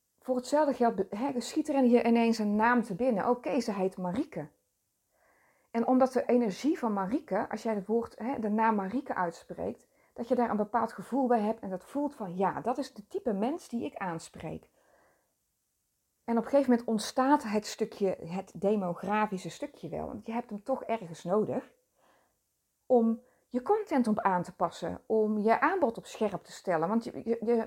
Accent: Dutch